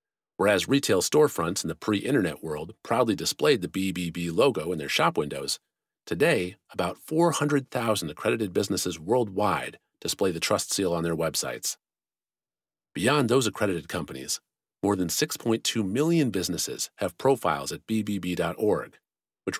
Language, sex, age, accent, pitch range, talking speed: English, male, 40-59, American, 85-130 Hz, 130 wpm